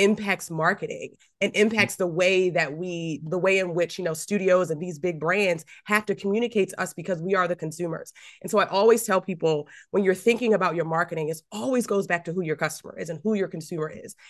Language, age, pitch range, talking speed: English, 20-39, 175-220 Hz, 230 wpm